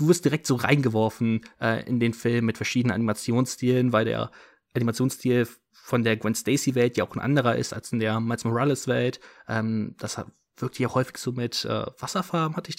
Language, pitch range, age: German, 115-130 Hz, 20-39